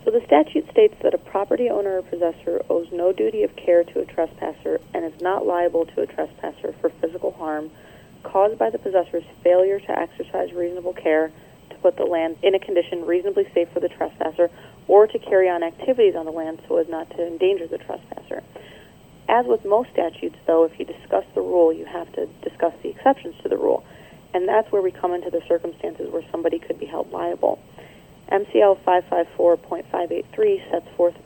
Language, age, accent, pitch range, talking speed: English, 40-59, American, 170-205 Hz, 195 wpm